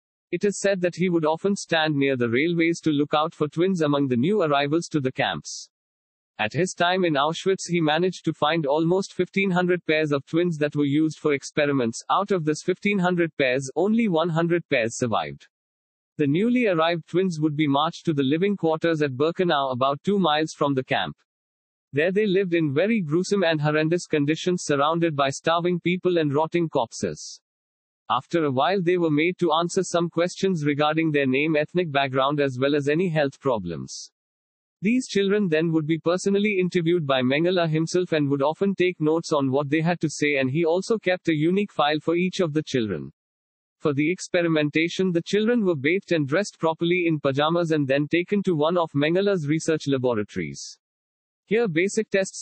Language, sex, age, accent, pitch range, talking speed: English, male, 50-69, Indian, 145-180 Hz, 190 wpm